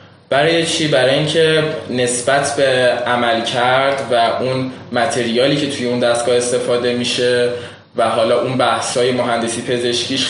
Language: Persian